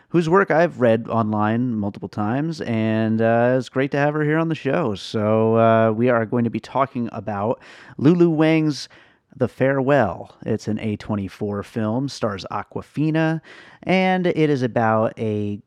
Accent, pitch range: American, 105-130 Hz